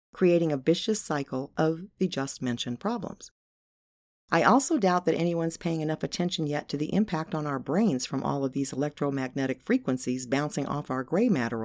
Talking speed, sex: 180 wpm, female